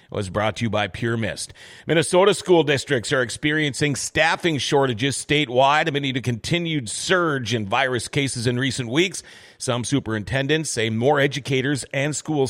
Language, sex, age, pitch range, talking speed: English, male, 40-59, 115-155 Hz, 155 wpm